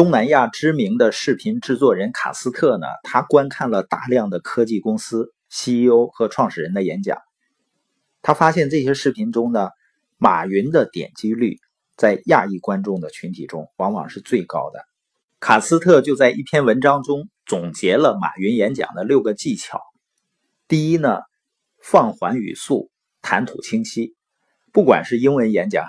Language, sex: Chinese, male